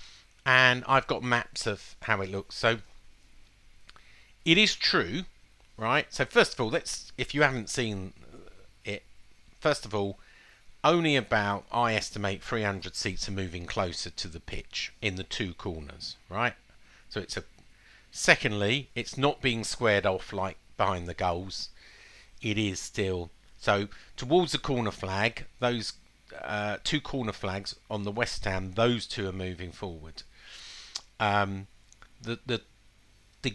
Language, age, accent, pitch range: English, 50-69, British, 95-120 Hz